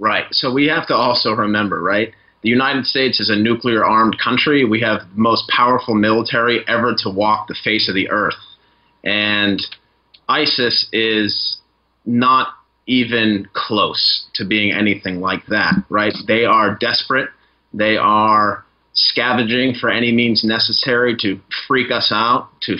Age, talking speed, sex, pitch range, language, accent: 30-49, 150 wpm, male, 105-125 Hz, English, American